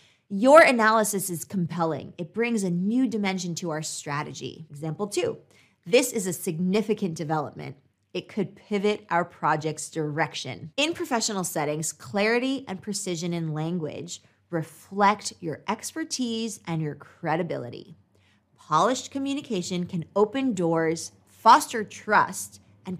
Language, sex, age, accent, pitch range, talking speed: English, female, 20-39, American, 155-215 Hz, 125 wpm